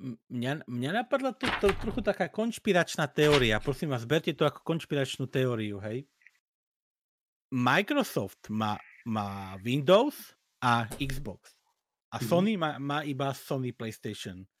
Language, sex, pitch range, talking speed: Czech, male, 135-195 Hz, 125 wpm